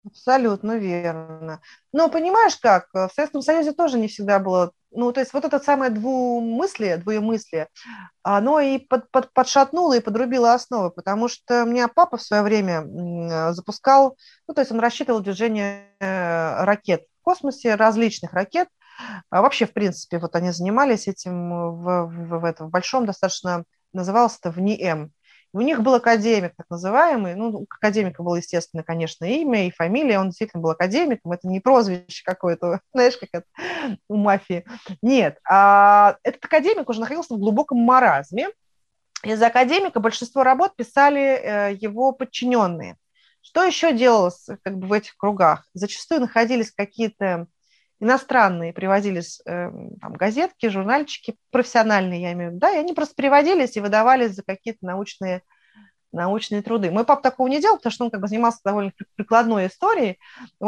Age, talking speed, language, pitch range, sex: 30-49, 150 wpm, Russian, 185-255 Hz, female